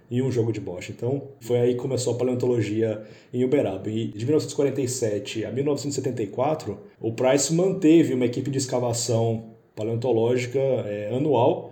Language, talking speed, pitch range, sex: Portuguese, 150 wpm, 115-145 Hz, male